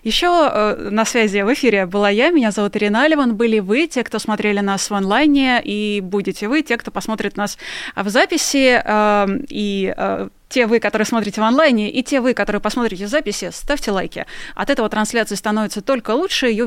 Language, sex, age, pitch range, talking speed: Russian, female, 20-39, 205-245 Hz, 185 wpm